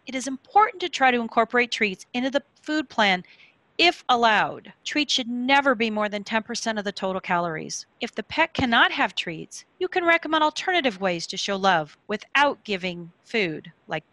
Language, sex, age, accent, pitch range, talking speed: English, female, 40-59, American, 210-290 Hz, 185 wpm